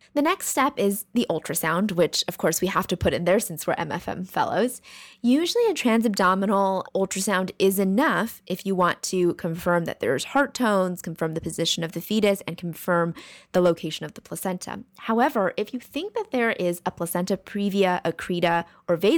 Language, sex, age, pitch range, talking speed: English, female, 20-39, 170-225 Hz, 185 wpm